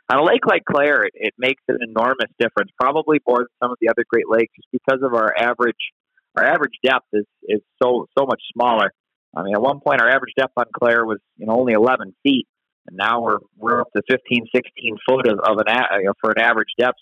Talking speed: 235 wpm